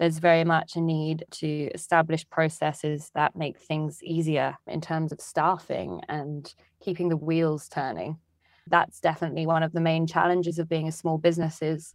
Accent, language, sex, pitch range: British, English, female, 160-170 Hz